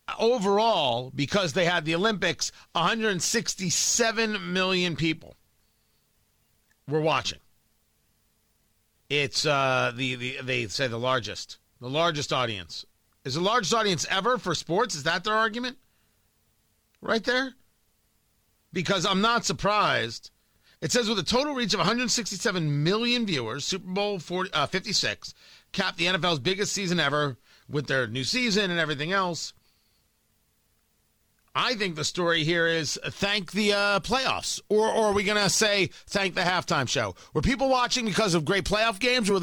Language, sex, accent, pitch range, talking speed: English, male, American, 130-205 Hz, 150 wpm